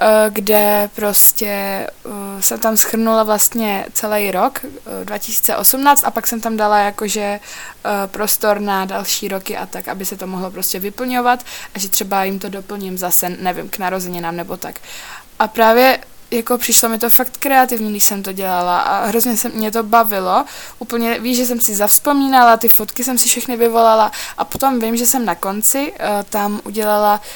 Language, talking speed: Czech, 175 wpm